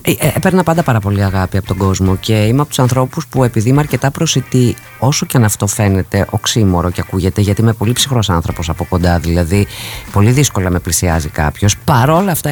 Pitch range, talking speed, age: 100-145 Hz, 195 wpm, 30-49